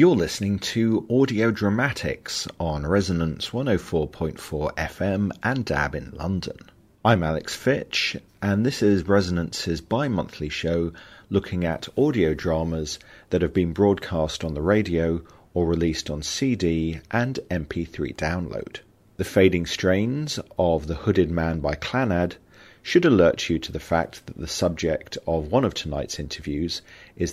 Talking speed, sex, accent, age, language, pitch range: 145 wpm, male, British, 40-59, English, 80-100 Hz